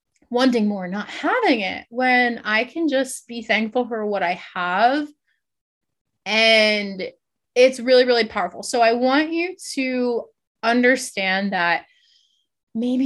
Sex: female